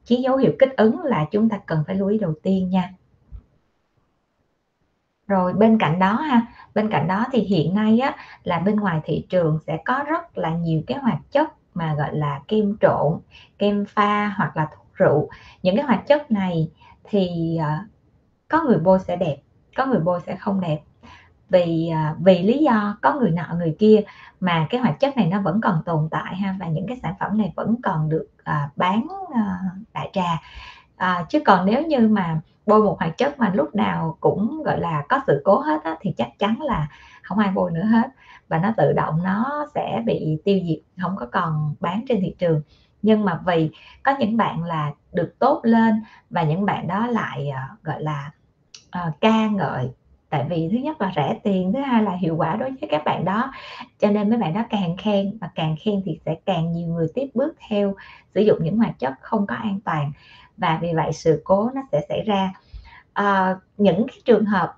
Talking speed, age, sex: 210 wpm, 20-39, female